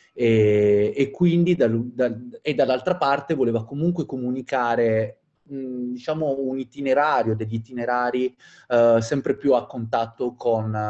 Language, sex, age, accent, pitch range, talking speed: Italian, male, 30-49, native, 105-130 Hz, 125 wpm